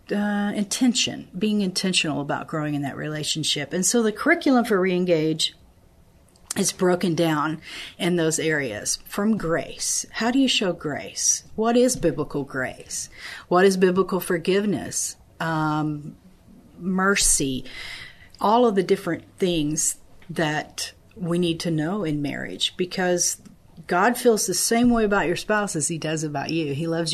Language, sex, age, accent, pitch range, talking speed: English, female, 40-59, American, 165-200 Hz, 145 wpm